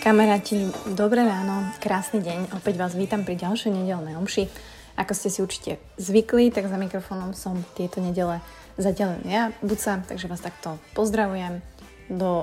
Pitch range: 180-205 Hz